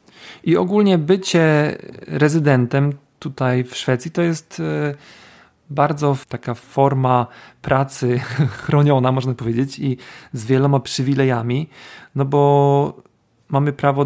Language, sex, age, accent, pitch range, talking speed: Polish, male, 40-59, native, 120-145 Hz, 100 wpm